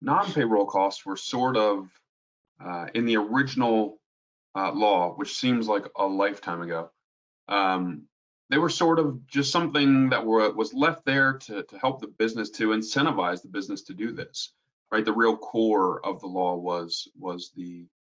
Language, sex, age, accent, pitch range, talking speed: English, male, 30-49, American, 100-135 Hz, 170 wpm